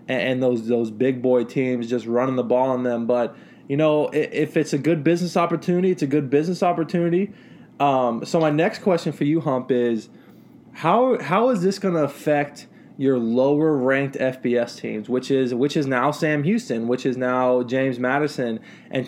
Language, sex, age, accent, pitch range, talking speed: English, male, 20-39, American, 125-150 Hz, 190 wpm